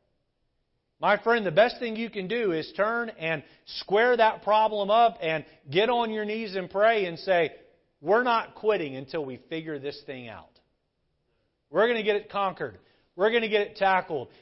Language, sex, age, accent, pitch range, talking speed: English, male, 40-59, American, 190-250 Hz, 185 wpm